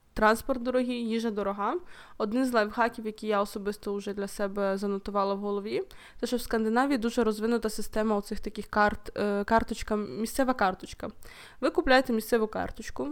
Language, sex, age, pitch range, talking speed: Ukrainian, female, 20-39, 205-245 Hz, 145 wpm